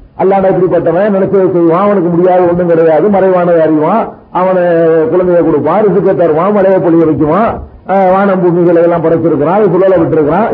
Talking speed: 125 wpm